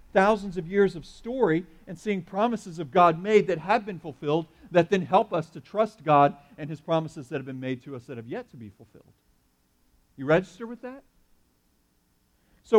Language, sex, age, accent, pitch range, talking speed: English, male, 50-69, American, 135-195 Hz, 195 wpm